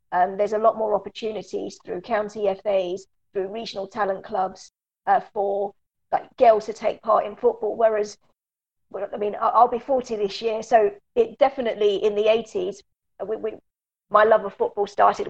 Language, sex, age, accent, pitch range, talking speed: English, female, 40-59, British, 200-235 Hz, 175 wpm